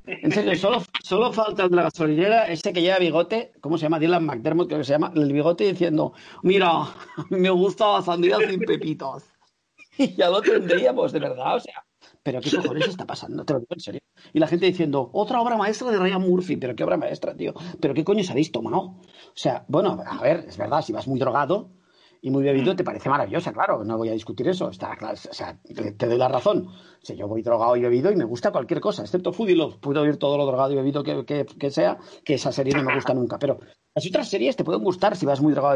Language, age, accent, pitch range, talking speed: Spanish, 40-59, Spanish, 140-185 Hz, 245 wpm